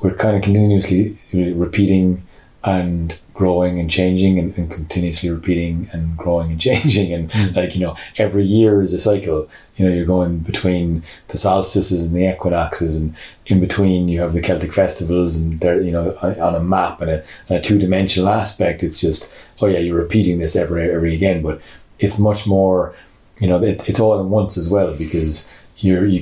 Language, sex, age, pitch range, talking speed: English, male, 30-49, 85-100 Hz, 190 wpm